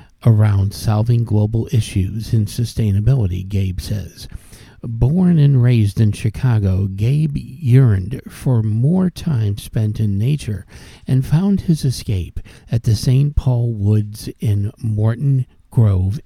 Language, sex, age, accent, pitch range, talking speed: English, male, 60-79, American, 100-130 Hz, 120 wpm